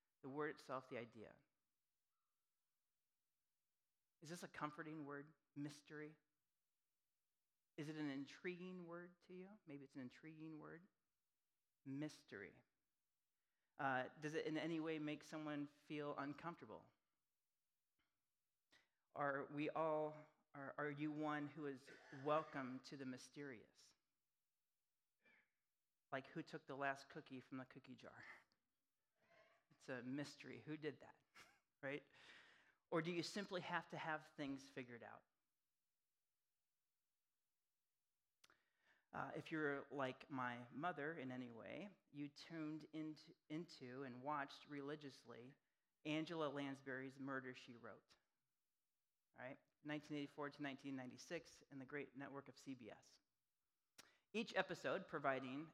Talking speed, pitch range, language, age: 115 wpm, 135-155 Hz, English, 40-59